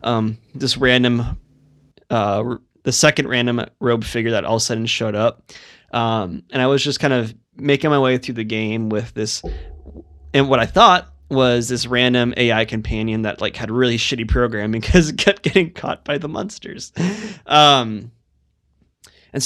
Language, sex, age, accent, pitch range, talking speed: English, male, 20-39, American, 110-135 Hz, 175 wpm